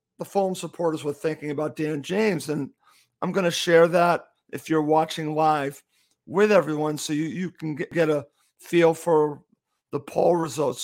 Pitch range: 150-180 Hz